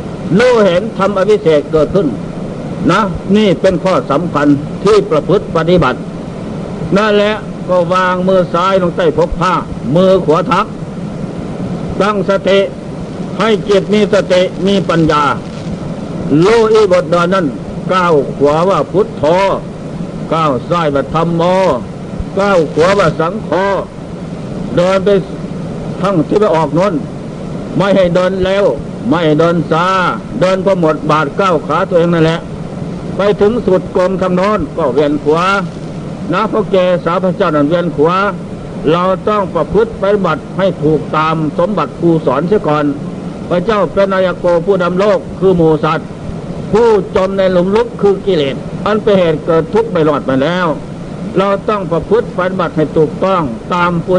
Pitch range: 165-195 Hz